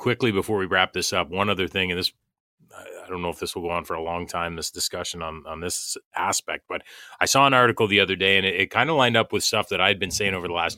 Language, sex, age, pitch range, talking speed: English, male, 30-49, 90-110 Hz, 295 wpm